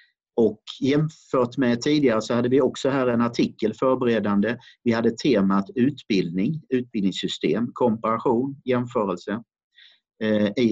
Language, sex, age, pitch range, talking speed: Swedish, male, 50-69, 105-145 Hz, 110 wpm